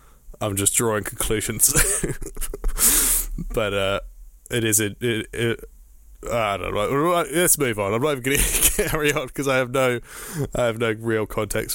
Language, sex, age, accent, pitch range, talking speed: English, male, 20-39, British, 105-135 Hz, 160 wpm